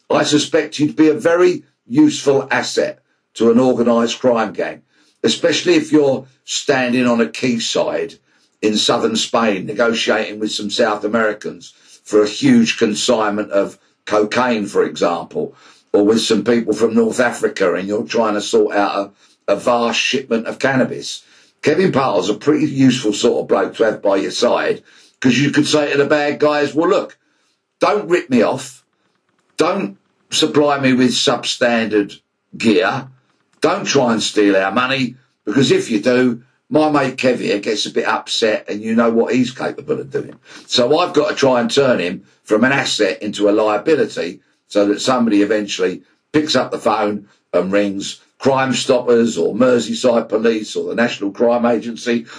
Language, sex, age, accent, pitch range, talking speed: English, male, 50-69, British, 105-145 Hz, 170 wpm